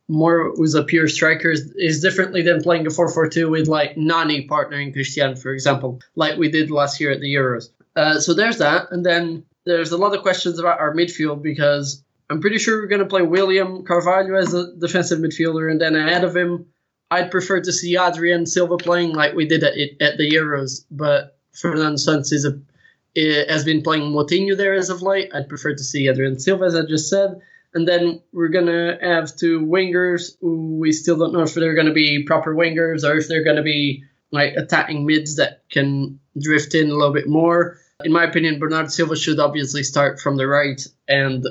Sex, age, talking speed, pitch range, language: male, 20-39, 210 wpm, 145-170 Hz, English